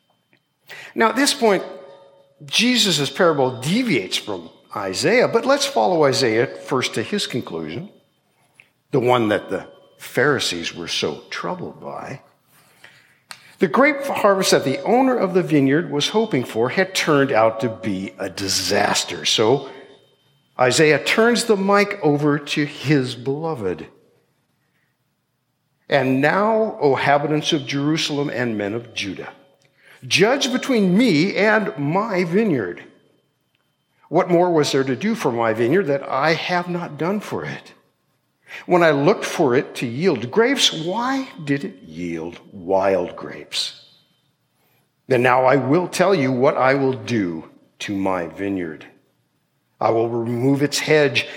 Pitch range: 125-195 Hz